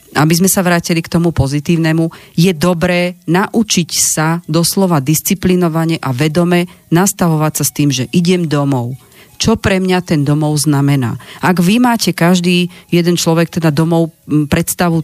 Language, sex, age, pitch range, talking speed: Slovak, female, 40-59, 150-185 Hz, 150 wpm